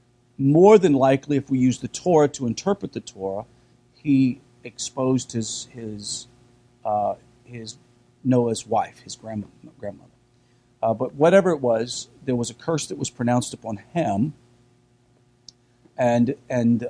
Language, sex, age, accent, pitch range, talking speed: English, male, 50-69, American, 120-145 Hz, 140 wpm